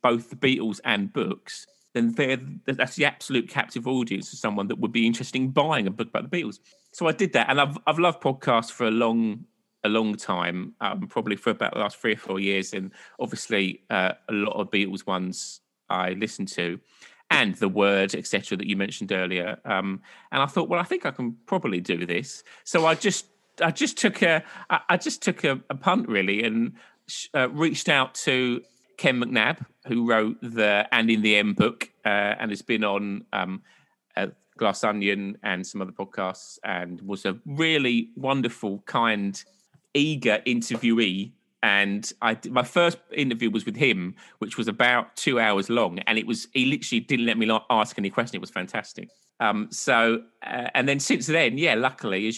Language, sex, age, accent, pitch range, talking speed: English, male, 30-49, British, 105-140 Hz, 195 wpm